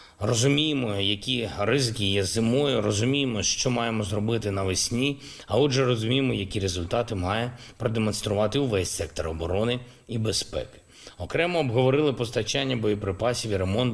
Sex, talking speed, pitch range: male, 120 wpm, 100-130 Hz